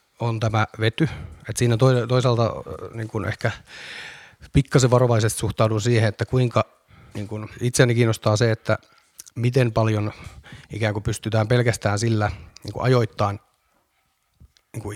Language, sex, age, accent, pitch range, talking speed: Finnish, male, 30-49, native, 105-125 Hz, 115 wpm